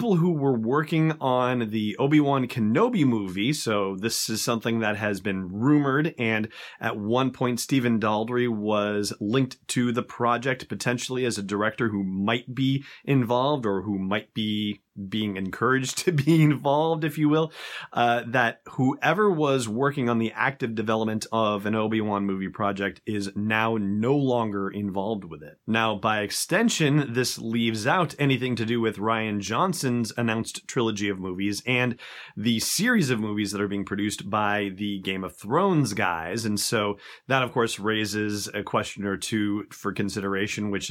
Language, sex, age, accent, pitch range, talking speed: English, male, 30-49, American, 100-125 Hz, 165 wpm